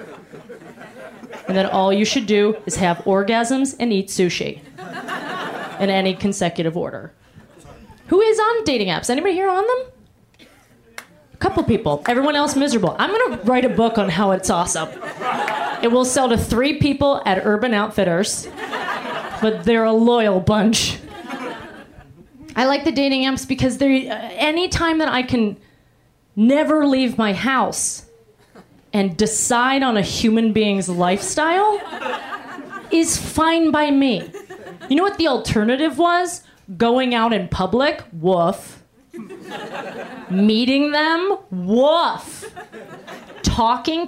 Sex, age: female, 30-49